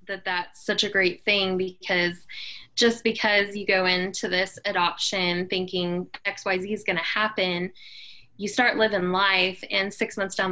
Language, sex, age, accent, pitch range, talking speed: English, female, 10-29, American, 185-215 Hz, 170 wpm